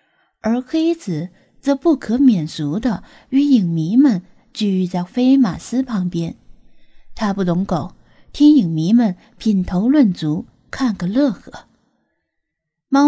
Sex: female